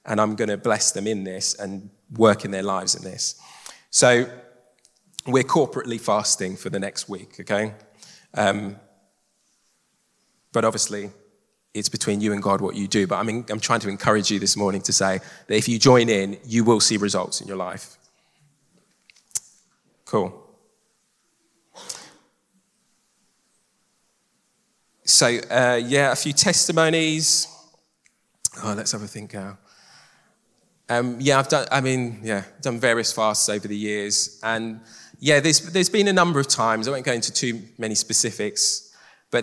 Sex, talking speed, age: male, 150 wpm, 20-39